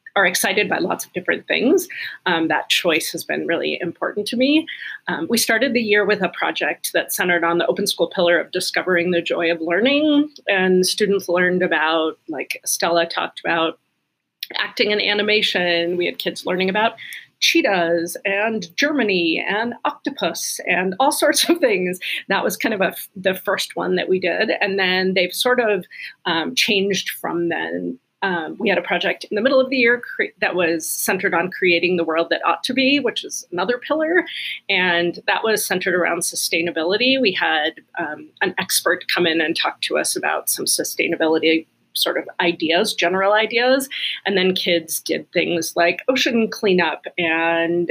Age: 30-49